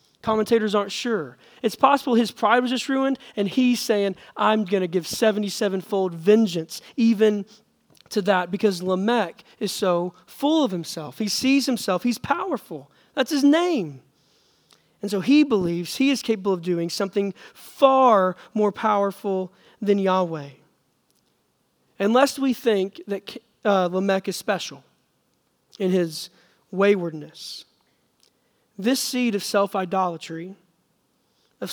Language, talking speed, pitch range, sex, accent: English, 130 wpm, 180-225 Hz, male, American